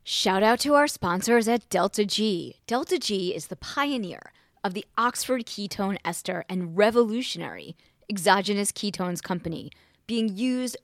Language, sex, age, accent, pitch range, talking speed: English, female, 20-39, American, 185-240 Hz, 140 wpm